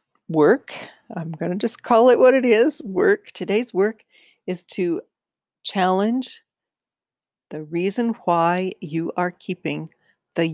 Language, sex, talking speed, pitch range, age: English, female, 130 wpm, 155-205 Hz, 50-69